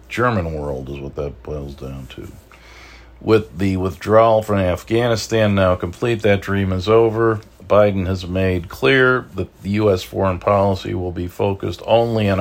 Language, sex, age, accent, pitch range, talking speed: English, male, 50-69, American, 85-105 Hz, 160 wpm